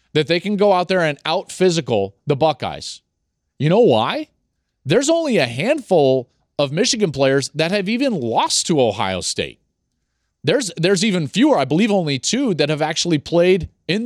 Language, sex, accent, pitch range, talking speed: English, male, American, 140-195 Hz, 170 wpm